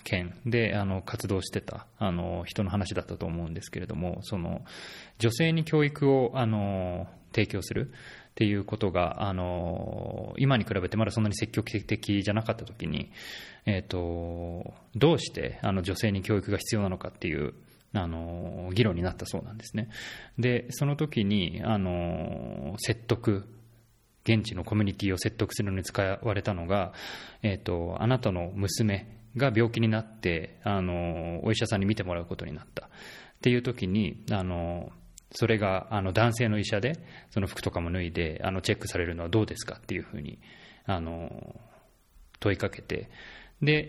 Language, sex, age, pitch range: Japanese, male, 20-39, 90-110 Hz